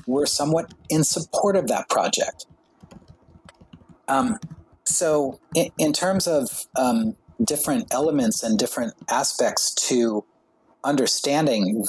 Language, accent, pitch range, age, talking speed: English, American, 120-165 Hz, 40-59, 105 wpm